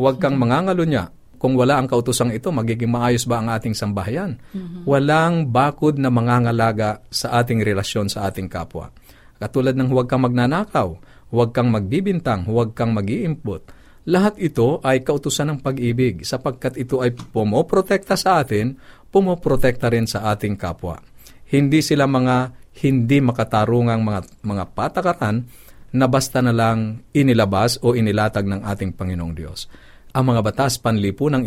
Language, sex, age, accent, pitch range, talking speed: Filipino, male, 50-69, native, 105-130 Hz, 145 wpm